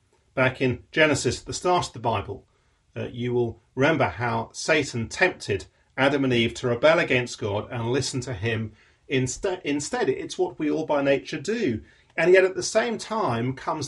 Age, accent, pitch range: 40-59, British, 105-135 Hz